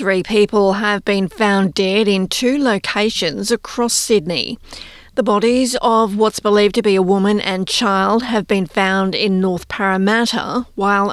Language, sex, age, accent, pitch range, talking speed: English, female, 40-59, Australian, 195-225 Hz, 155 wpm